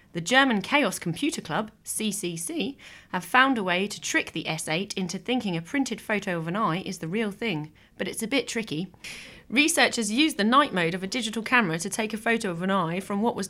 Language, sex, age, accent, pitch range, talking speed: English, female, 30-49, British, 170-225 Hz, 220 wpm